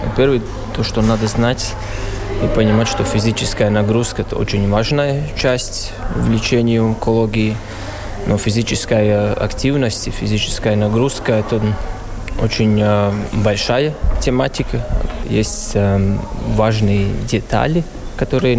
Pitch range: 105-115 Hz